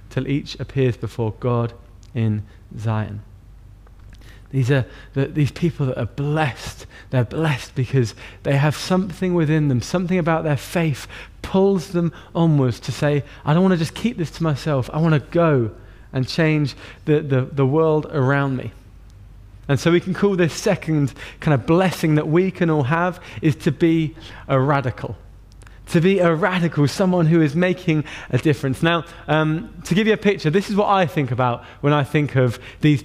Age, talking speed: 20-39, 180 wpm